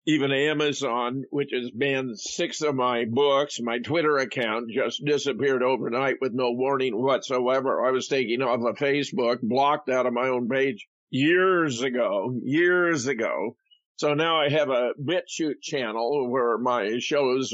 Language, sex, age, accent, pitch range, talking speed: English, male, 50-69, American, 130-155 Hz, 155 wpm